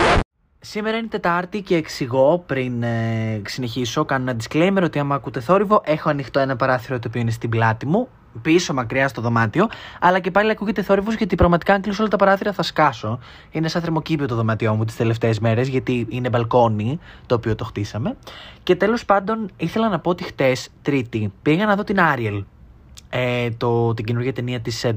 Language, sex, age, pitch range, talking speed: Greek, male, 20-39, 125-175 Hz, 190 wpm